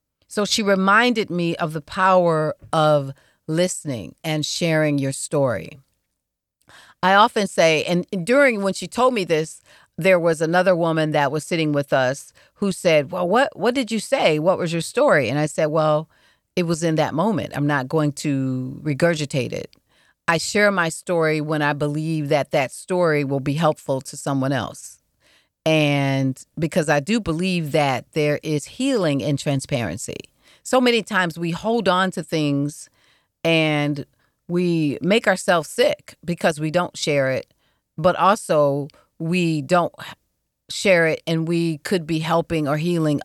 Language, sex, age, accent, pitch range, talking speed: English, female, 40-59, American, 145-185 Hz, 160 wpm